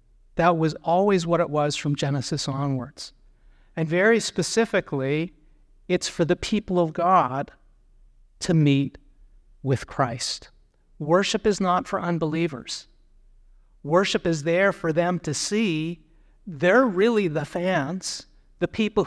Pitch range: 150-180 Hz